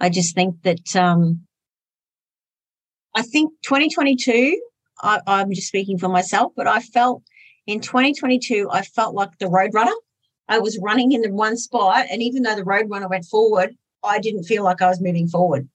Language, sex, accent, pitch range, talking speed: English, female, Australian, 190-240 Hz, 170 wpm